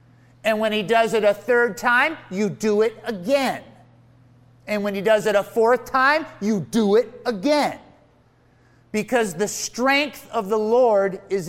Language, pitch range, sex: English, 160-255 Hz, male